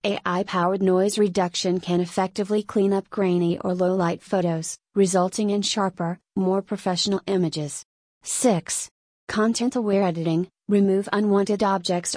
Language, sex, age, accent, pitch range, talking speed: English, female, 30-49, American, 175-205 Hz, 115 wpm